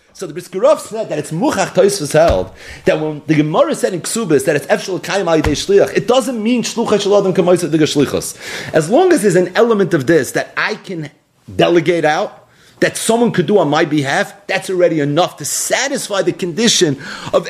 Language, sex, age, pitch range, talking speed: English, male, 40-59, 185-290 Hz, 195 wpm